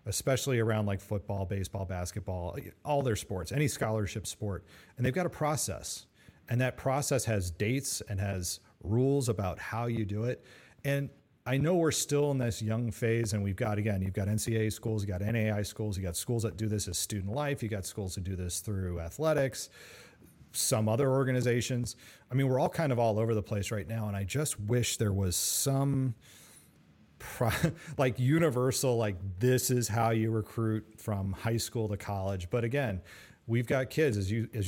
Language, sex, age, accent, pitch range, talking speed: English, male, 40-59, American, 105-130 Hz, 190 wpm